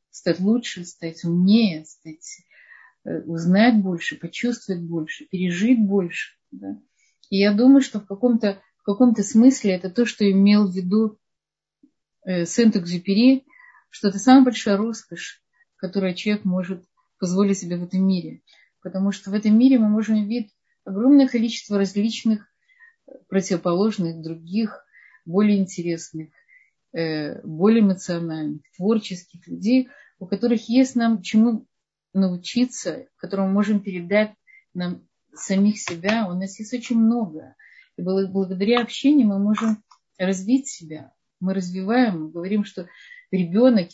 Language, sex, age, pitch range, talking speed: Russian, female, 30-49, 185-235 Hz, 120 wpm